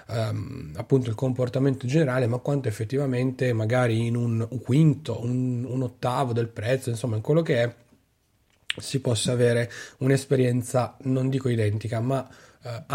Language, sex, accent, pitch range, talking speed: Italian, male, native, 115-135 Hz, 145 wpm